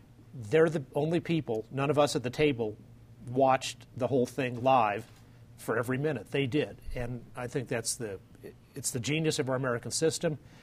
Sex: male